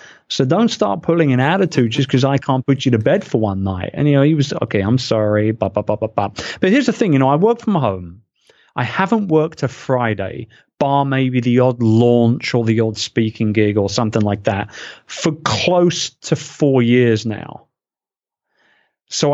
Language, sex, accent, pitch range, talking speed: English, male, British, 115-155 Hz, 205 wpm